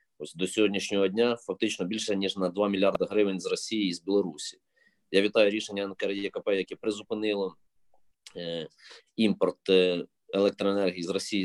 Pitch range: 95-105 Hz